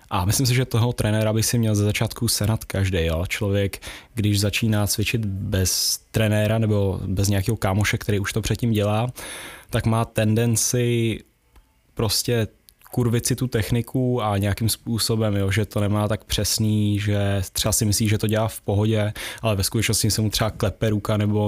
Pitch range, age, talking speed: 105-115 Hz, 10-29, 175 wpm